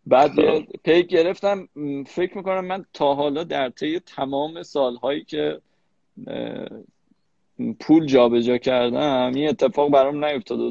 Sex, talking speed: male, 120 wpm